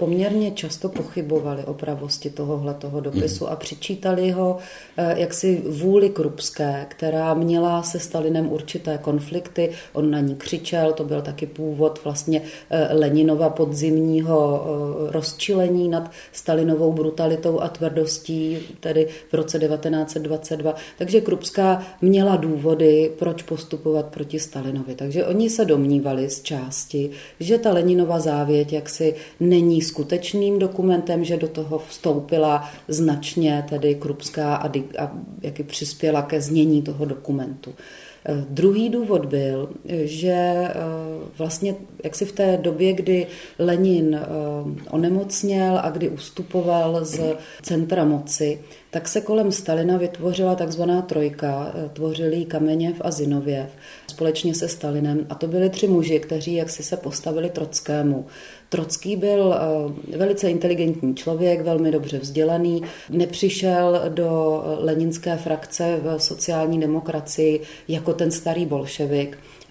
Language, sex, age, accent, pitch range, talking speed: Czech, female, 30-49, native, 150-175 Hz, 120 wpm